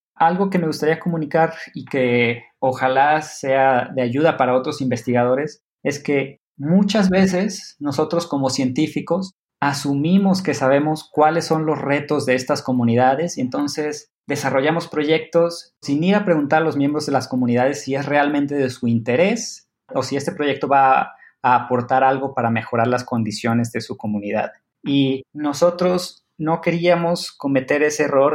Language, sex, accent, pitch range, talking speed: English, male, Mexican, 125-155 Hz, 155 wpm